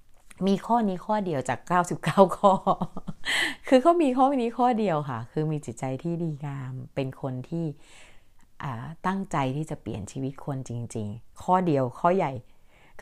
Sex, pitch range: female, 135-175 Hz